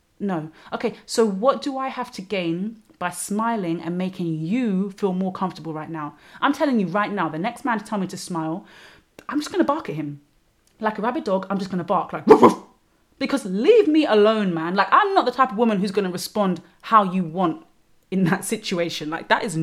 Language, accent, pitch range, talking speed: English, British, 165-220 Hz, 230 wpm